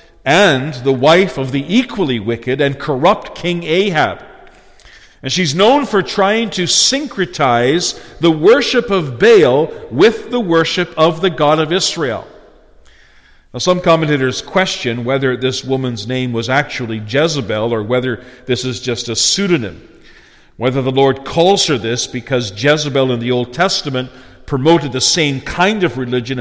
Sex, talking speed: male, 150 wpm